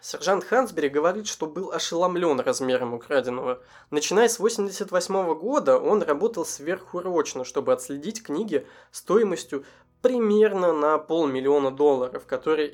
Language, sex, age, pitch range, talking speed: Russian, male, 20-39, 145-215 Hz, 115 wpm